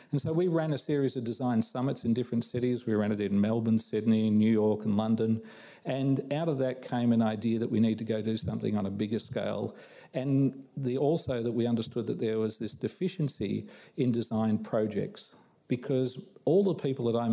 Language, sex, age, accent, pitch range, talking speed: English, male, 40-59, Australian, 110-130 Hz, 205 wpm